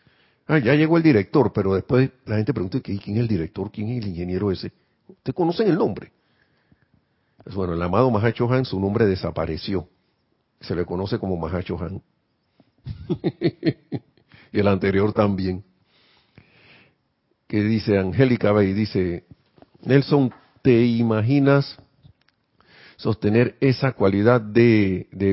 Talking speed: 125 wpm